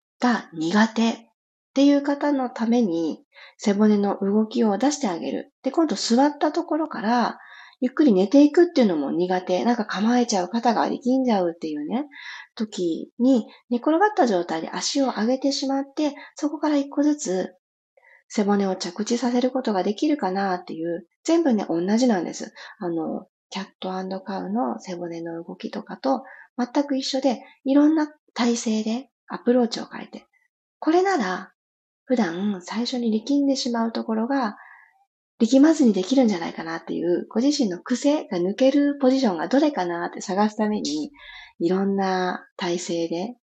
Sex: female